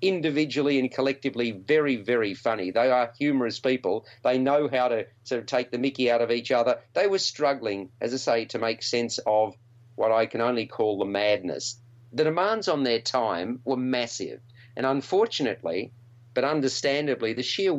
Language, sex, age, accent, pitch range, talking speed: English, male, 40-59, Australian, 120-140 Hz, 180 wpm